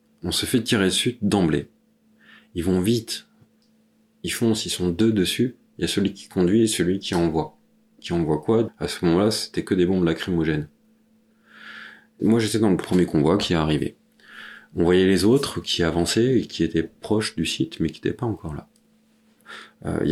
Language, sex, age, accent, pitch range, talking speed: French, male, 30-49, French, 85-115 Hz, 190 wpm